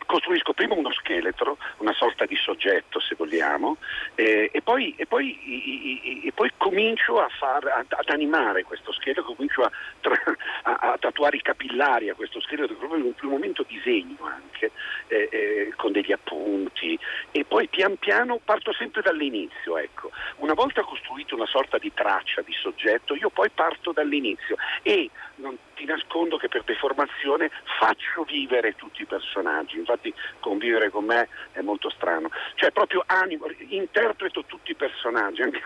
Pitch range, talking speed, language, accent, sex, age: 310-425 Hz, 160 wpm, Italian, native, male, 50-69